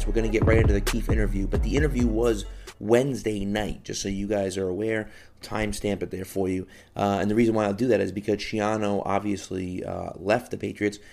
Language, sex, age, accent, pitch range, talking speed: English, male, 30-49, American, 95-110 Hz, 225 wpm